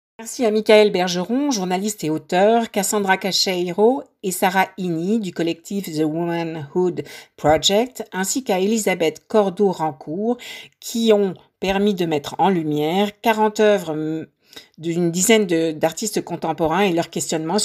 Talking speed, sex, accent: 125 wpm, female, French